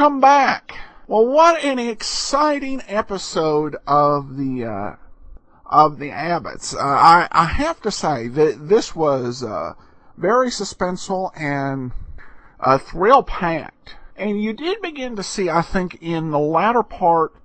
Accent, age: American, 50-69